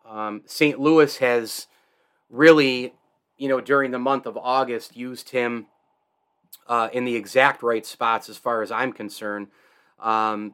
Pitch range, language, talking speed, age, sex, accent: 115-130 Hz, English, 150 wpm, 30-49, male, American